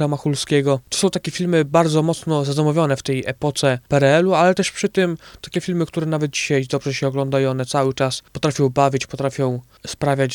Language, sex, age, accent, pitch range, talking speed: Polish, male, 20-39, native, 135-155 Hz, 175 wpm